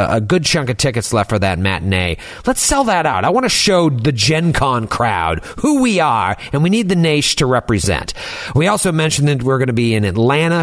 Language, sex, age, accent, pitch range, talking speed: English, male, 40-59, American, 115-175 Hz, 230 wpm